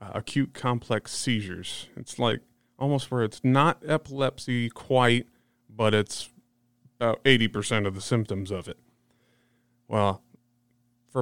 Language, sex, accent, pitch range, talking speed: English, male, American, 105-120 Hz, 125 wpm